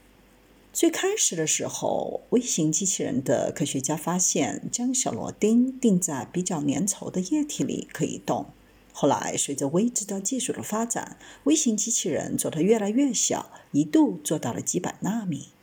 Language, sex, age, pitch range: Chinese, female, 50-69, 170-245 Hz